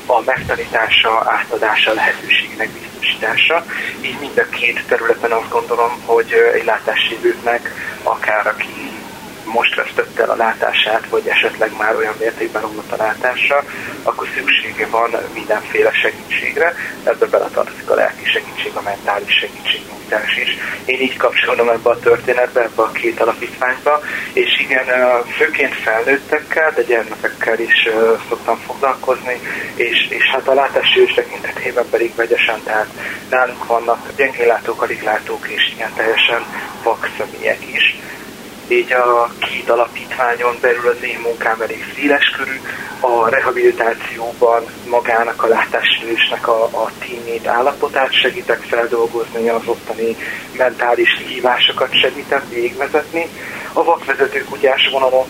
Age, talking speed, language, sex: 30-49, 125 wpm, Hungarian, male